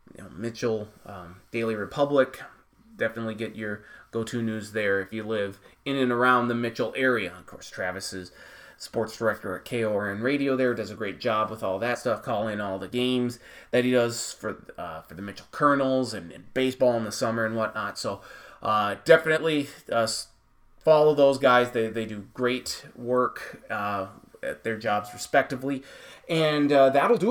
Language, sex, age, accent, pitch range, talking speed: English, male, 30-49, American, 115-150 Hz, 175 wpm